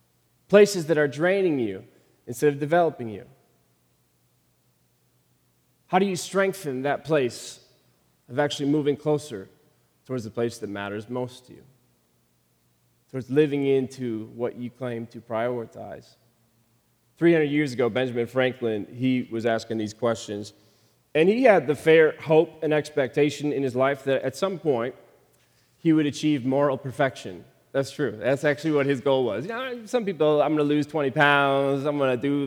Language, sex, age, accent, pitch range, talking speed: English, male, 30-49, American, 120-155 Hz, 160 wpm